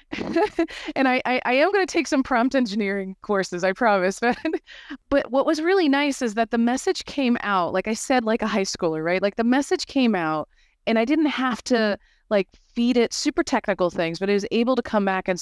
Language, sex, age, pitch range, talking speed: English, female, 30-49, 180-250 Hz, 220 wpm